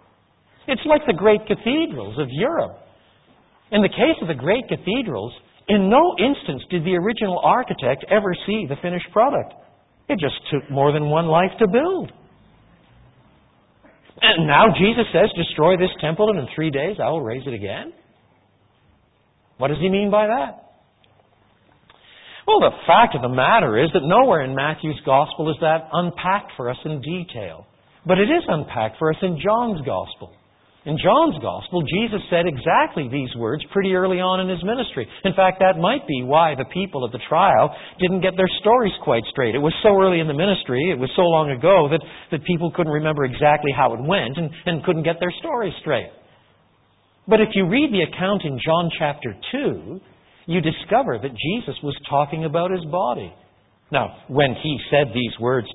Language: English